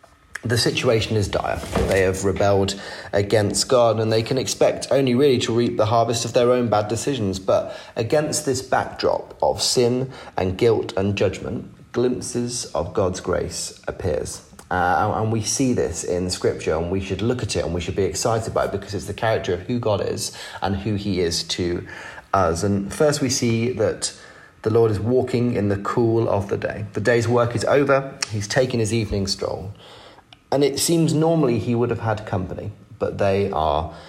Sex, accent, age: male, British, 30-49